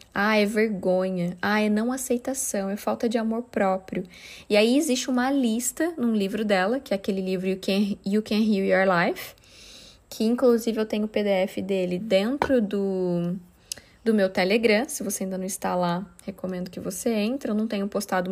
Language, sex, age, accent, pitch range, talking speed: Portuguese, female, 10-29, Brazilian, 195-245 Hz, 185 wpm